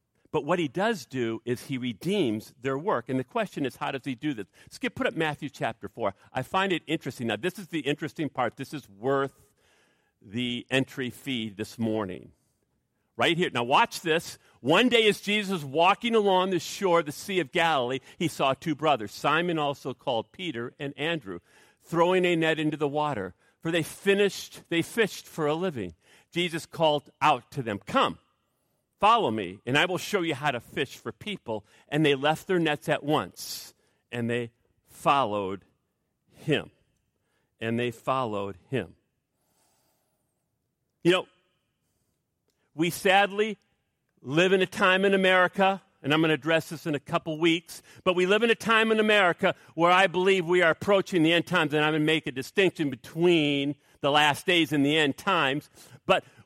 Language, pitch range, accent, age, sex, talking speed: English, 135-180 Hz, American, 50-69, male, 185 wpm